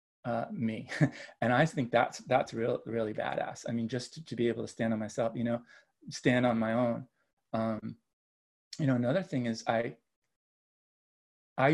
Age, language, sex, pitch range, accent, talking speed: 30-49, English, male, 120-155 Hz, American, 180 wpm